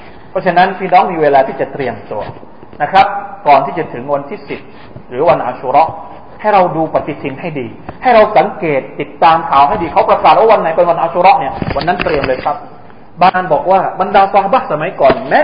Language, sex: Thai, male